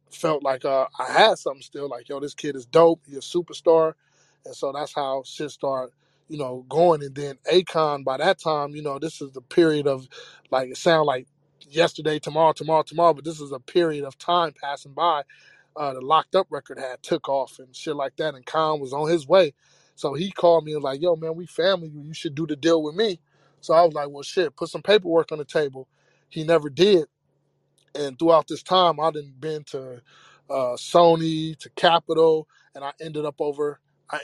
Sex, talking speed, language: male, 215 wpm, English